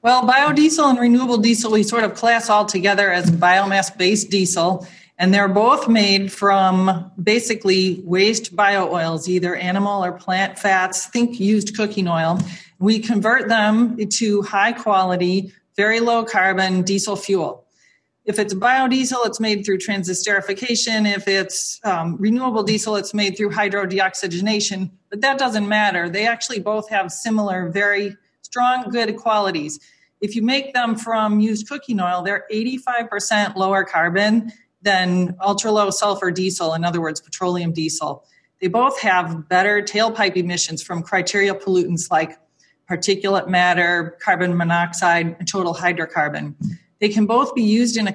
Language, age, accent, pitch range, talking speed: English, 40-59, American, 180-215 Hz, 140 wpm